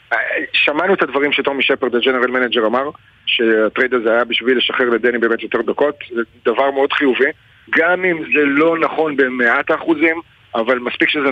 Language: Hebrew